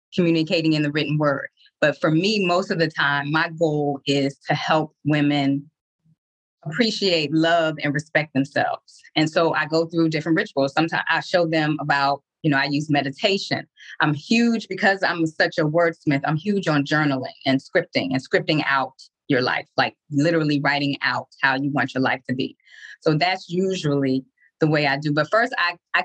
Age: 20-39